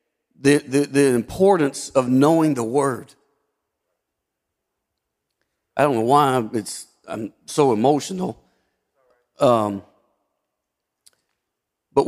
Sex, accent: male, American